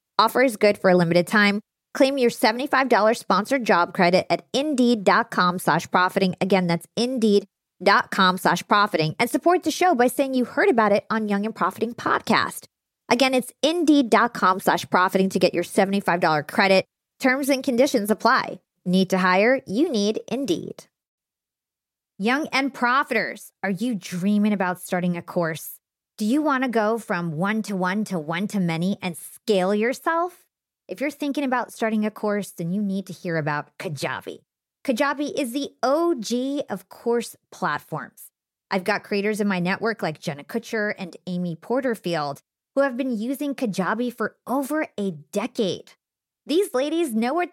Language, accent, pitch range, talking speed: English, American, 190-265 Hz, 160 wpm